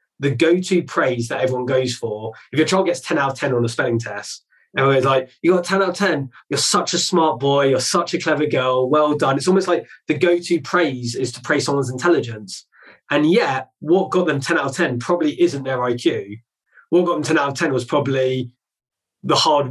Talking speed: 225 wpm